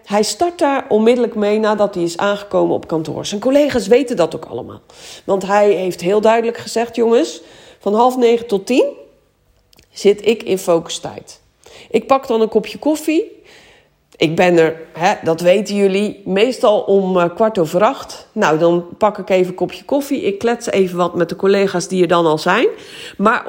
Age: 40-59